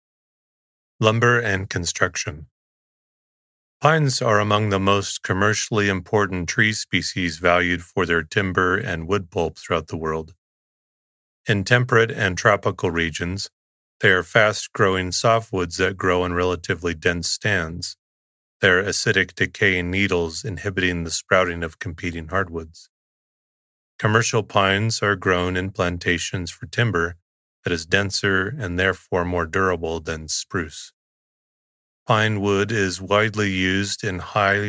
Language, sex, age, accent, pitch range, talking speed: English, male, 30-49, American, 85-100 Hz, 125 wpm